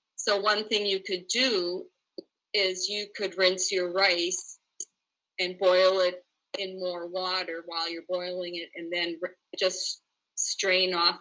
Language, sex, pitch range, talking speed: English, female, 180-210 Hz, 145 wpm